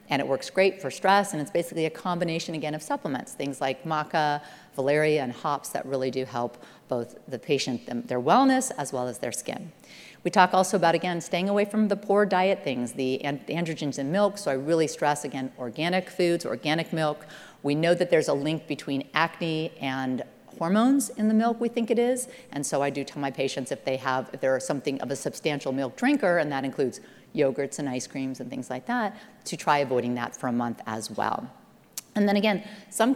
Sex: female